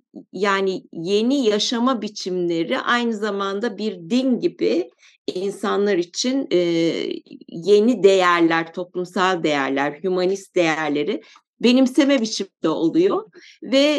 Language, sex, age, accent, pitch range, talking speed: Turkish, female, 50-69, native, 180-265 Hz, 100 wpm